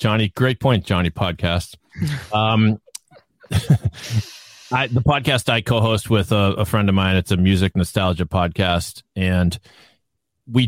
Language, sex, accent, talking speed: English, male, American, 130 wpm